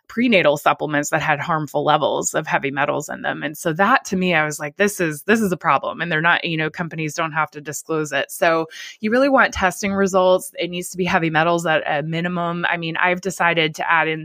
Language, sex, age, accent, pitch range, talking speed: English, female, 20-39, American, 155-190 Hz, 245 wpm